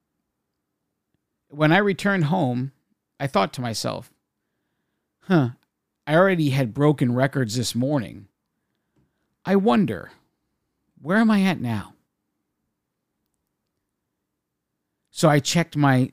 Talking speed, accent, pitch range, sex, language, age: 100 wpm, American, 120-150 Hz, male, English, 50-69